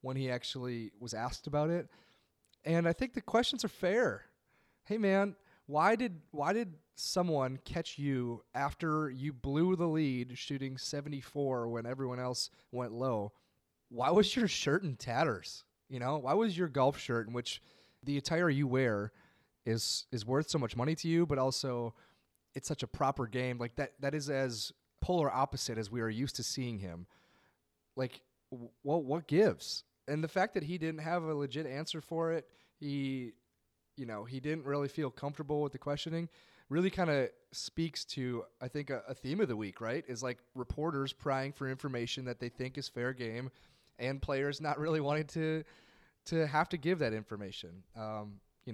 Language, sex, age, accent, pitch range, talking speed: English, male, 30-49, American, 120-155 Hz, 185 wpm